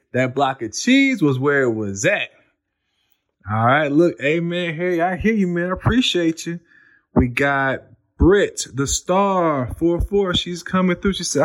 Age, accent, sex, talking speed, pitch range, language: 20-39, American, male, 175 wpm, 150-250 Hz, English